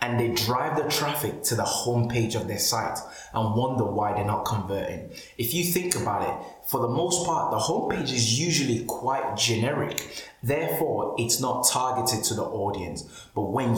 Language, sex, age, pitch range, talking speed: English, male, 20-39, 115-145 Hz, 180 wpm